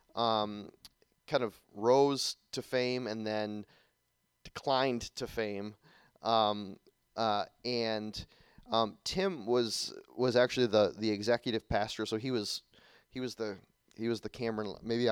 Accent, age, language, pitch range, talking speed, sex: American, 30-49, English, 105-120 Hz, 135 wpm, male